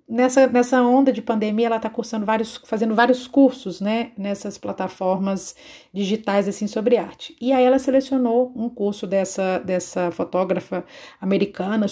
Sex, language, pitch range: female, Portuguese, 200-245 Hz